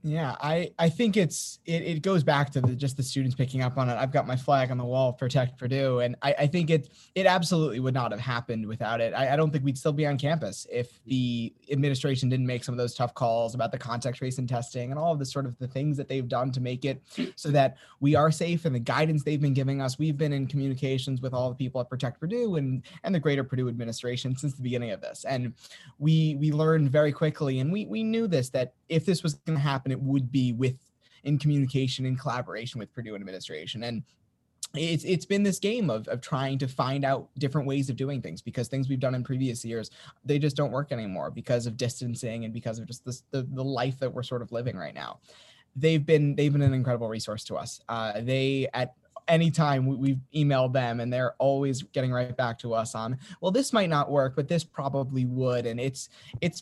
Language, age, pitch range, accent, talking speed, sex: English, 20-39, 125-150 Hz, American, 240 wpm, male